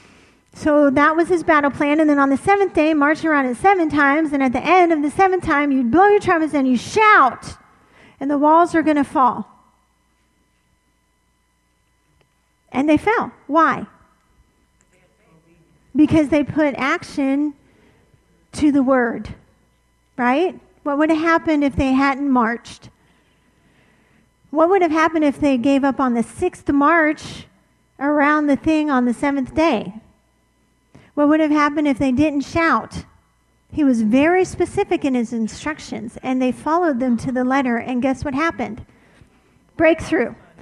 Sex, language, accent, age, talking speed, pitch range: female, English, American, 40-59, 155 wpm, 255-330 Hz